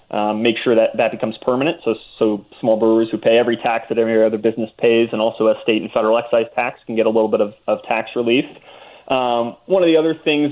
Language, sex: English, male